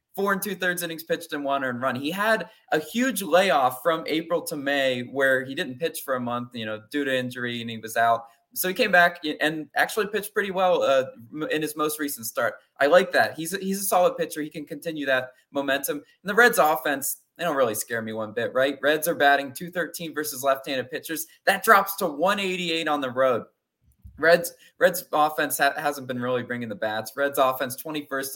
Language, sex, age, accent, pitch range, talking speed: English, male, 20-39, American, 135-180 Hz, 215 wpm